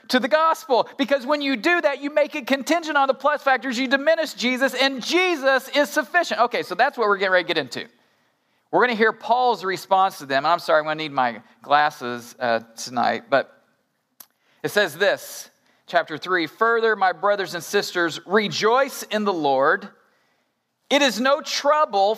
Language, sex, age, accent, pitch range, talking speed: English, male, 40-59, American, 185-270 Hz, 190 wpm